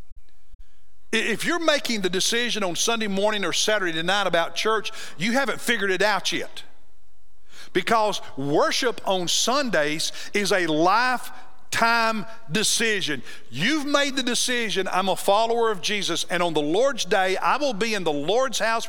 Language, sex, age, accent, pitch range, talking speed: English, male, 50-69, American, 165-235 Hz, 155 wpm